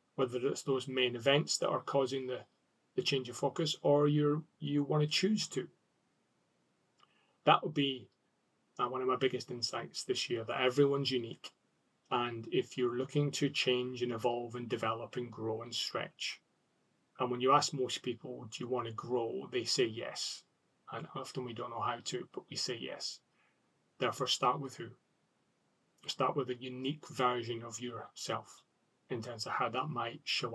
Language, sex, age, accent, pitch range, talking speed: English, male, 30-49, British, 120-140 Hz, 180 wpm